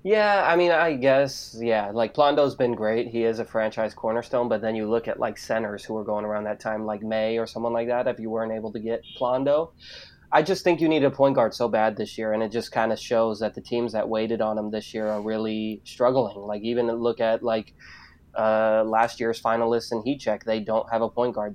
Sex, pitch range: male, 110-120 Hz